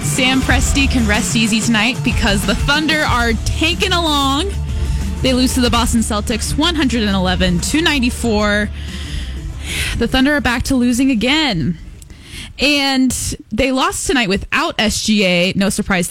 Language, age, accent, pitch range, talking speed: English, 10-29, American, 180-245 Hz, 125 wpm